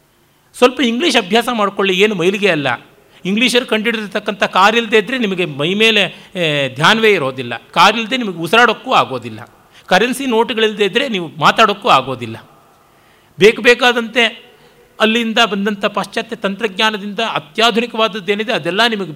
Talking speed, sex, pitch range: 110 wpm, male, 160-225 Hz